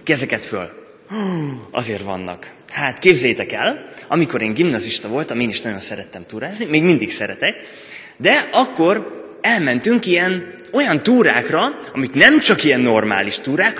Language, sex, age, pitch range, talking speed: Hungarian, male, 20-39, 115-195 Hz, 140 wpm